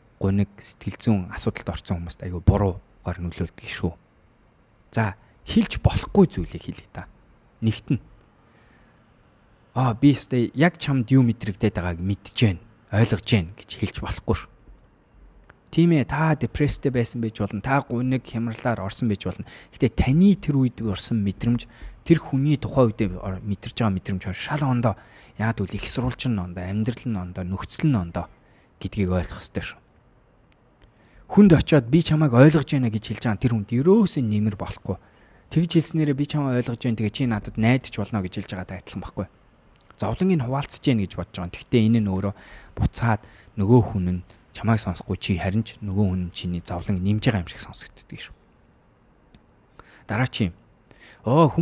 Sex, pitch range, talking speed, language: male, 100-130 Hz, 100 wpm, English